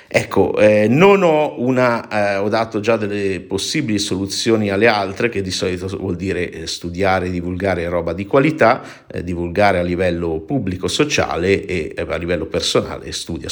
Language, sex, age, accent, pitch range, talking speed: Italian, male, 50-69, native, 90-115 Hz, 165 wpm